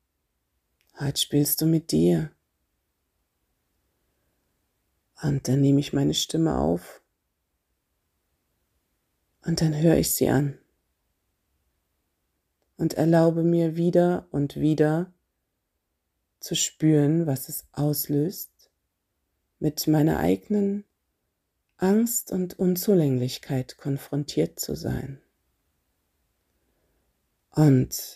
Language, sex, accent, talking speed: German, female, German, 85 wpm